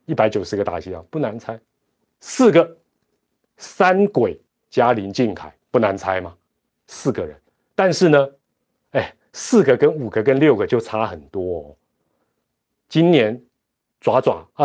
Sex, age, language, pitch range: male, 30-49, Chinese, 115-160 Hz